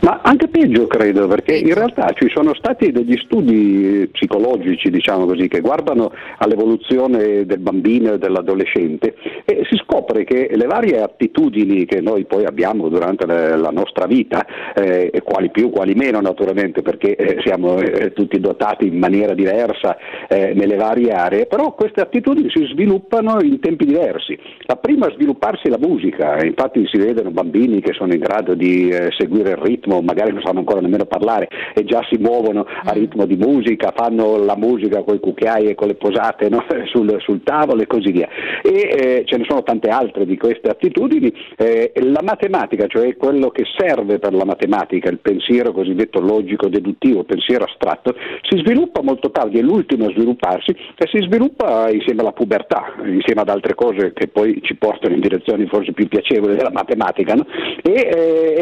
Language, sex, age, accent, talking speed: Italian, male, 50-69, native, 170 wpm